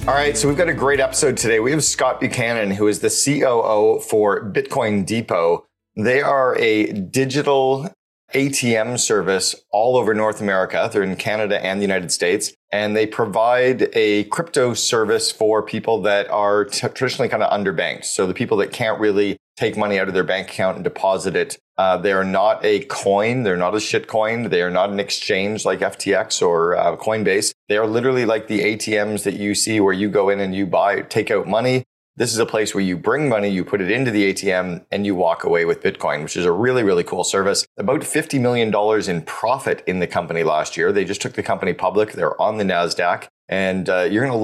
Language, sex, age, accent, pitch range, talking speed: English, male, 30-49, American, 95-120 Hz, 215 wpm